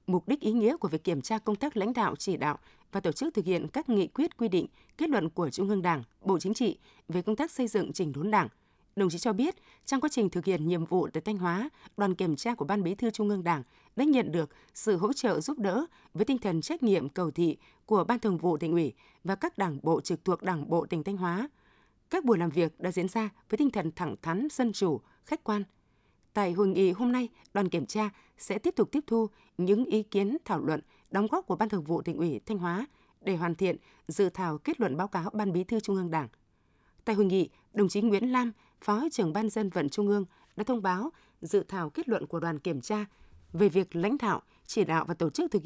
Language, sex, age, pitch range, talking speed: Vietnamese, female, 20-39, 175-220 Hz, 250 wpm